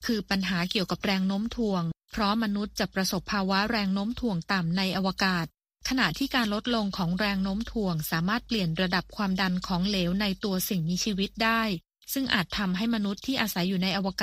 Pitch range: 185-225 Hz